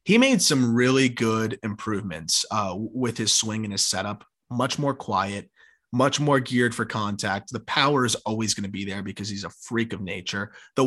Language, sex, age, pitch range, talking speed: English, male, 20-39, 110-155 Hz, 200 wpm